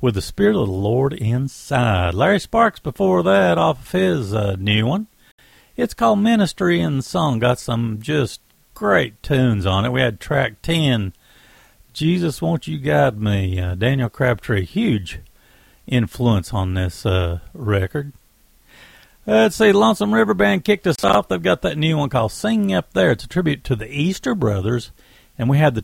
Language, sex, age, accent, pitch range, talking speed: English, male, 60-79, American, 110-170 Hz, 180 wpm